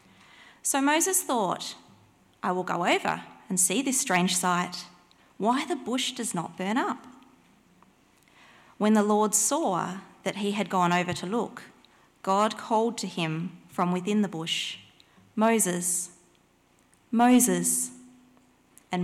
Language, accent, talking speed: English, Australian, 130 wpm